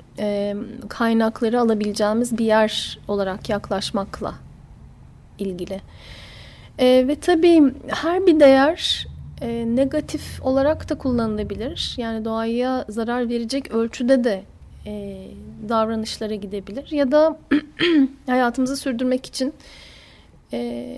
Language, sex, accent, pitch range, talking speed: Turkish, female, native, 210-255 Hz, 95 wpm